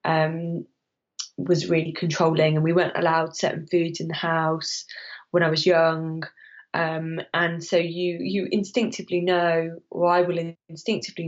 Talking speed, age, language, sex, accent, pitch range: 150 wpm, 20-39, English, female, British, 165-190 Hz